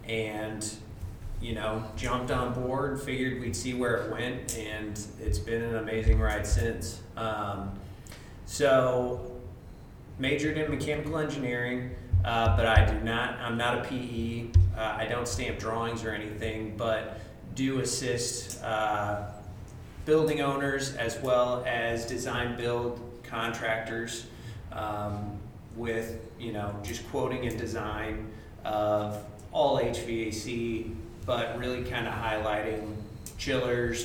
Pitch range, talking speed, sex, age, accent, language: 110-120 Hz, 120 wpm, male, 30-49, American, English